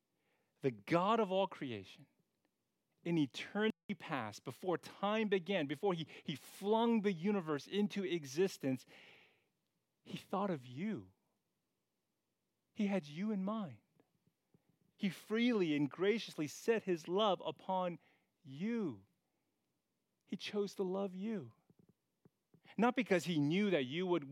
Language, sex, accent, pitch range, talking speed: English, male, American, 140-200 Hz, 120 wpm